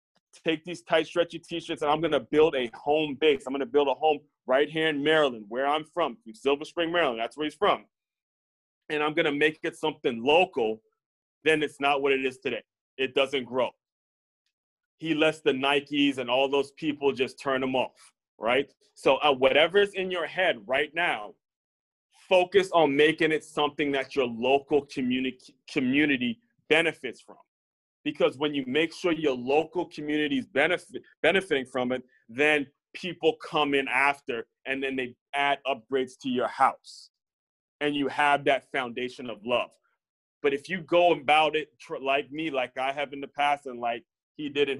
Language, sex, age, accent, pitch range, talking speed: English, male, 30-49, American, 130-155 Hz, 180 wpm